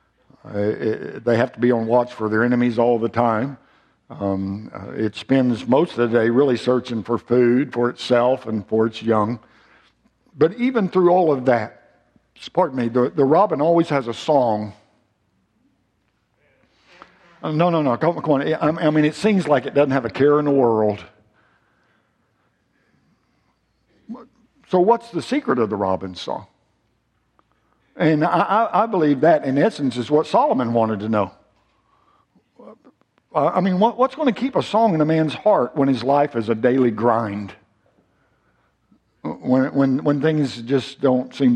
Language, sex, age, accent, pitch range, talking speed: English, male, 60-79, American, 115-155 Hz, 165 wpm